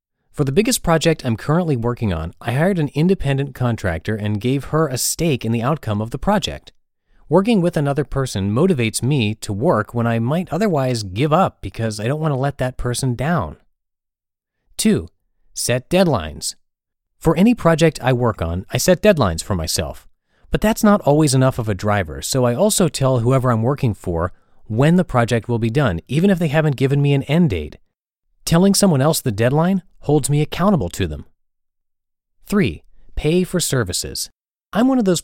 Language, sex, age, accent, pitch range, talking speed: English, male, 30-49, American, 105-160 Hz, 185 wpm